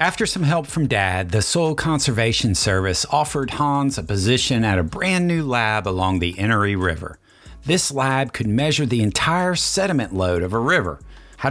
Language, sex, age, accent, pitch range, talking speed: English, male, 40-59, American, 100-140 Hz, 175 wpm